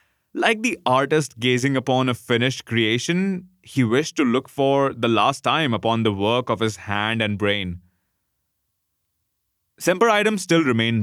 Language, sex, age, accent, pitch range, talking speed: English, male, 20-39, Indian, 110-140 Hz, 145 wpm